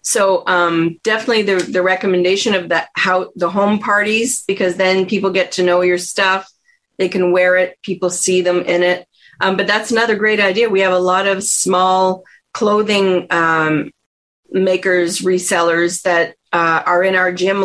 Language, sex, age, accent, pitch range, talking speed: English, female, 40-59, American, 180-225 Hz, 170 wpm